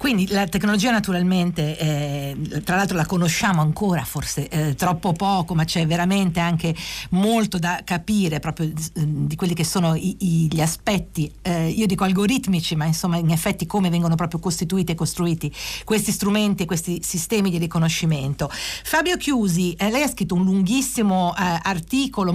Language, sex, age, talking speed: Italian, female, 50-69, 165 wpm